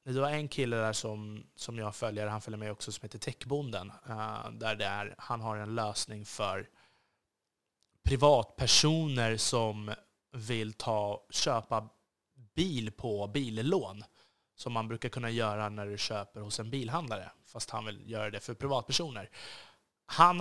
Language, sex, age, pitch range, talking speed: Swedish, male, 20-39, 110-135 Hz, 140 wpm